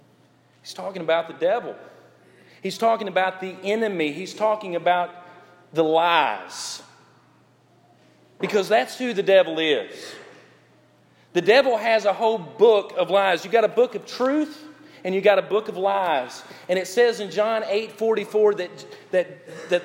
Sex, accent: male, American